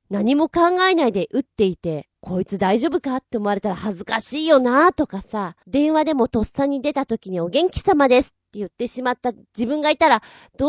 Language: Japanese